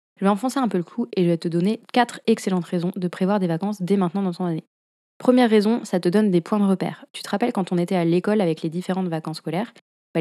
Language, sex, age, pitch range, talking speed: French, female, 20-39, 175-200 Hz, 275 wpm